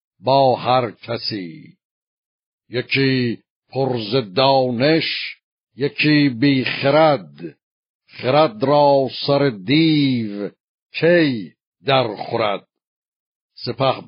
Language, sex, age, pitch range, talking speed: Persian, male, 60-79, 125-145 Hz, 65 wpm